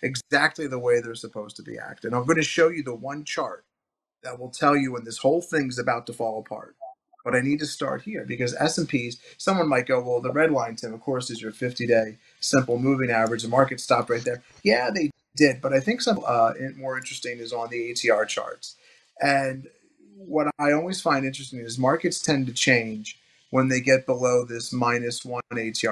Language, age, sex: English, 30-49, male